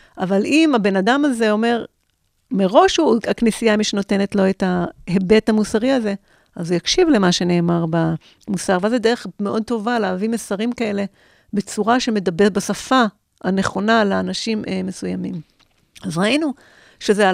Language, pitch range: Hebrew, 185-235 Hz